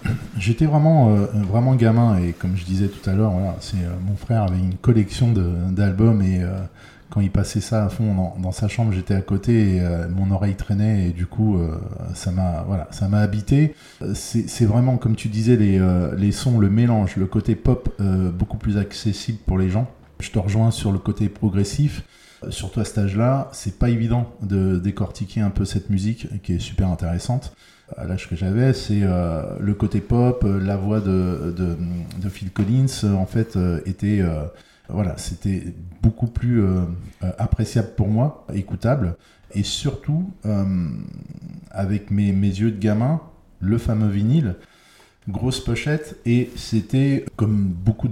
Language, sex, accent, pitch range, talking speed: French, male, French, 95-115 Hz, 175 wpm